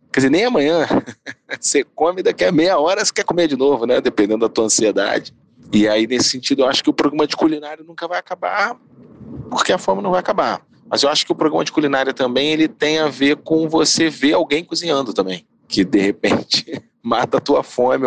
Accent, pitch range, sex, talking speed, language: Brazilian, 110-150 Hz, male, 215 wpm, Portuguese